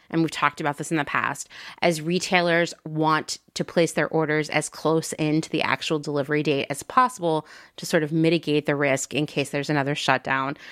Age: 30-49